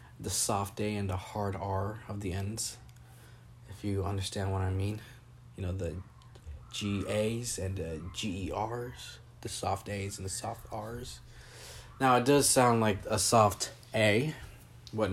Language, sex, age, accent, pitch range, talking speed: English, male, 20-39, American, 100-125 Hz, 160 wpm